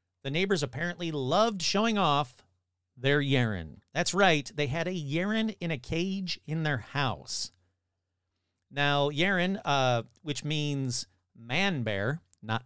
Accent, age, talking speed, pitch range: American, 40-59, 135 wpm, 115-175 Hz